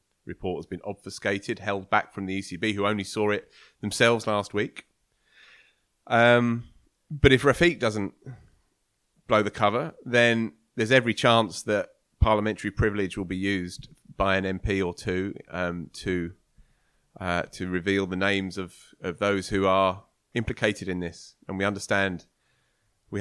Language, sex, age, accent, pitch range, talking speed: English, male, 30-49, British, 95-115 Hz, 150 wpm